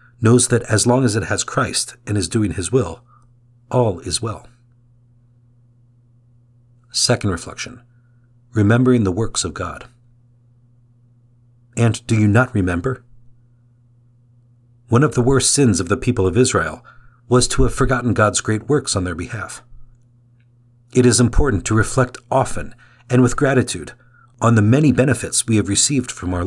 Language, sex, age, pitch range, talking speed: English, male, 50-69, 115-125 Hz, 150 wpm